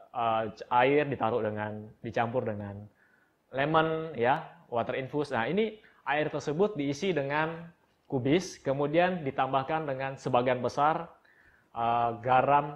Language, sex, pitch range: Indonesian, male, 120-150 Hz